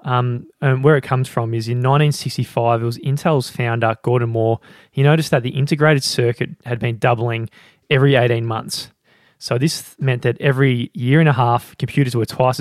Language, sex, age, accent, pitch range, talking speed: English, male, 20-39, Australian, 115-135 Hz, 190 wpm